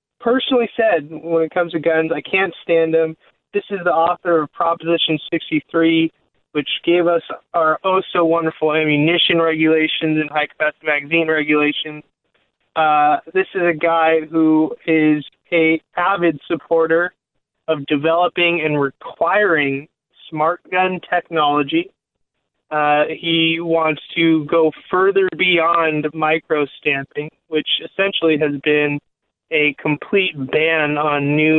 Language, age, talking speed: English, 20-39, 120 wpm